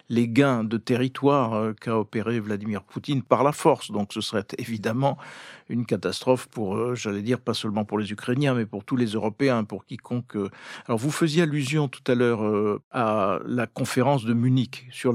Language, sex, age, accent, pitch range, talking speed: French, male, 50-69, French, 115-145 Hz, 180 wpm